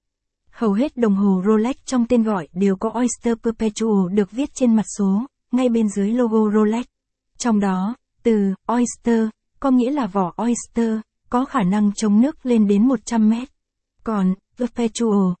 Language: Vietnamese